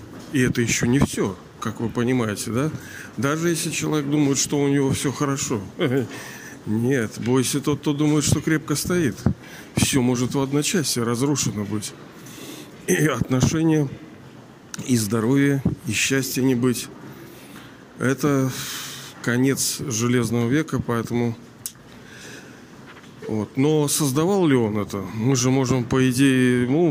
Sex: male